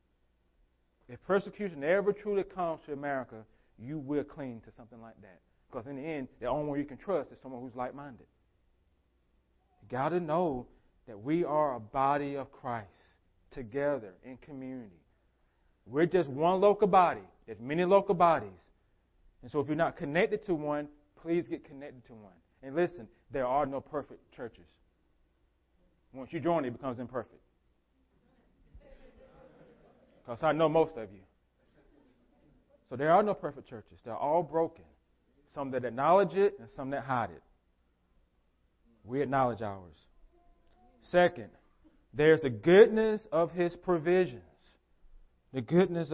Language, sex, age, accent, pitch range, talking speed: English, male, 40-59, American, 95-160 Hz, 150 wpm